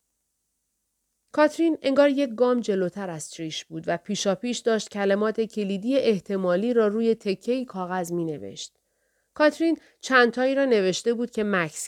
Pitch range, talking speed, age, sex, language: 185-275 Hz, 140 wpm, 30-49, female, Persian